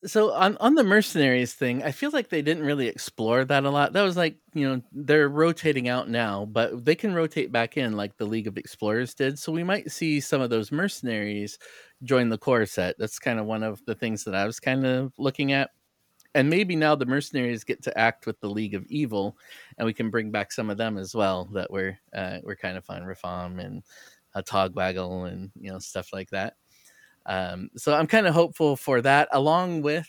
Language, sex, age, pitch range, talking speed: English, male, 20-39, 105-140 Hz, 225 wpm